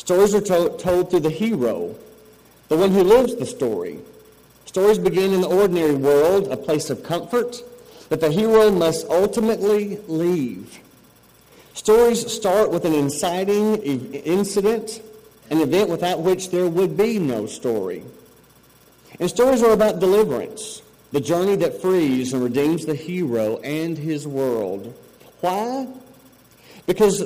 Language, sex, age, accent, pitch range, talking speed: English, male, 40-59, American, 145-200 Hz, 135 wpm